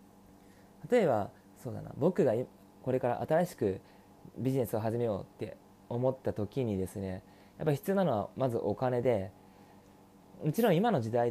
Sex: male